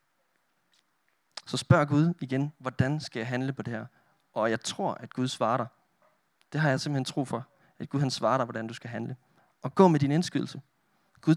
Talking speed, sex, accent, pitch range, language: 205 wpm, male, native, 115-145 Hz, Danish